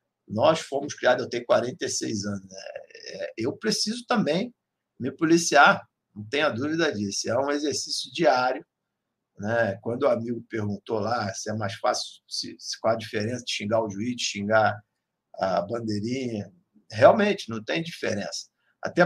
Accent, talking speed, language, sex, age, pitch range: Brazilian, 150 wpm, Portuguese, male, 50-69, 110-165 Hz